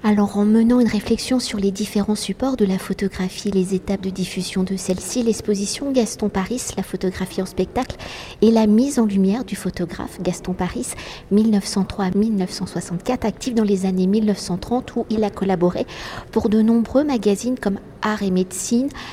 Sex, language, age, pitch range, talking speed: female, French, 50-69, 190-225 Hz, 165 wpm